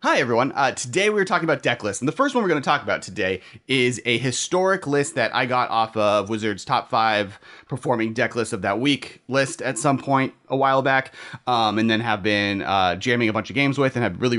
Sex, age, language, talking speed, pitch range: male, 30-49, English, 245 wpm, 105-135 Hz